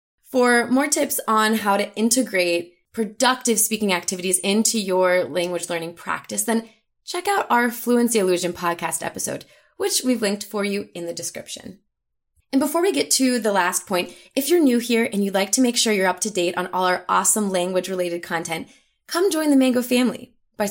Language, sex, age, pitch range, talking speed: English, female, 20-39, 180-245 Hz, 190 wpm